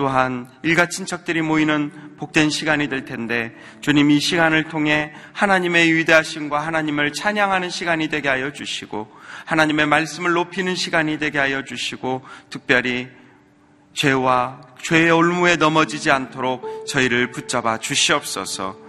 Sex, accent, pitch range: male, native, 130-160 Hz